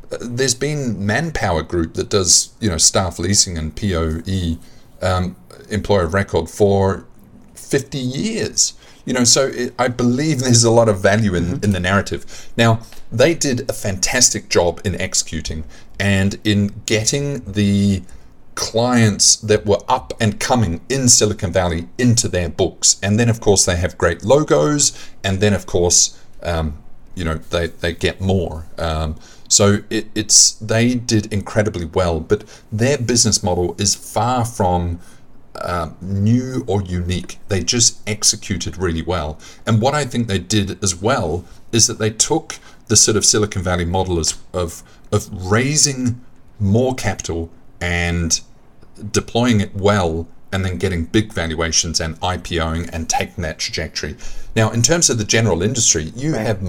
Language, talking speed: English, 155 wpm